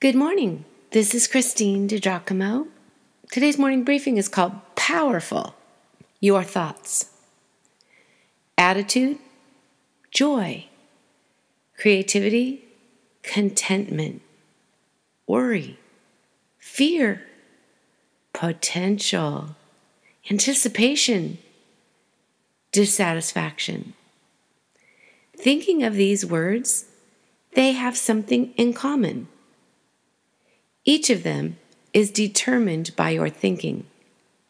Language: English